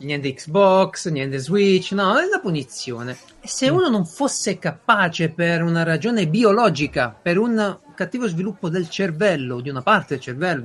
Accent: native